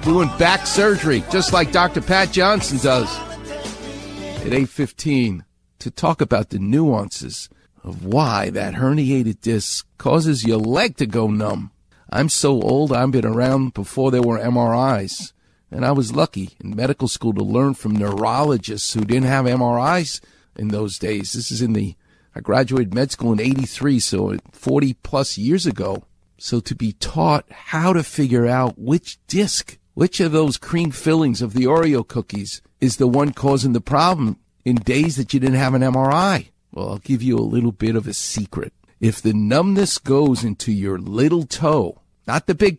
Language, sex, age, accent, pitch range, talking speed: English, male, 50-69, American, 105-140 Hz, 175 wpm